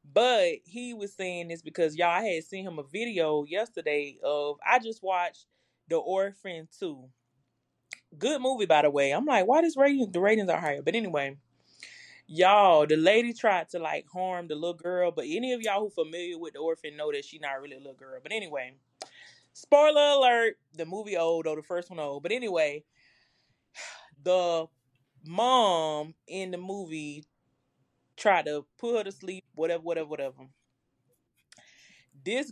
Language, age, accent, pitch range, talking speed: English, 20-39, American, 150-215 Hz, 175 wpm